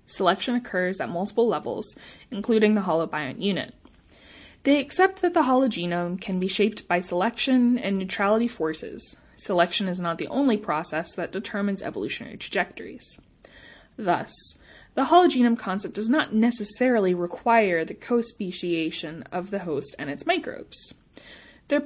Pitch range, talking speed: 180-240 Hz, 135 wpm